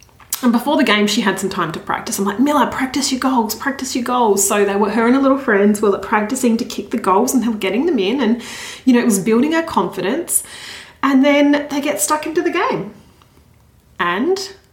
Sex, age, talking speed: female, 30-49, 230 wpm